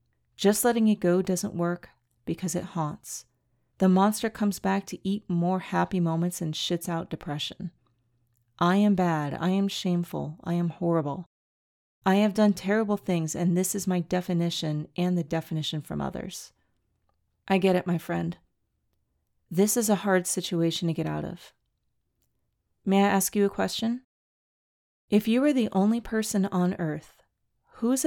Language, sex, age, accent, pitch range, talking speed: English, female, 30-49, American, 165-205 Hz, 160 wpm